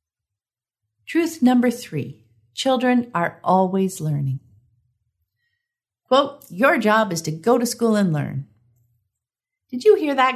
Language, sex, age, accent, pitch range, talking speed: English, female, 50-69, American, 145-230 Hz, 120 wpm